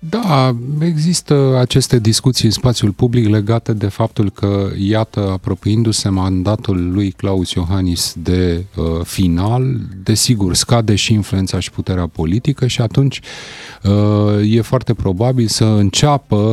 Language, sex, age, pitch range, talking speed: Romanian, male, 30-49, 90-135 Hz, 120 wpm